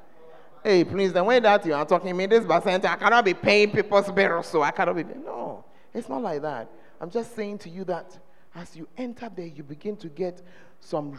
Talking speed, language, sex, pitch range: 230 wpm, English, male, 135-195 Hz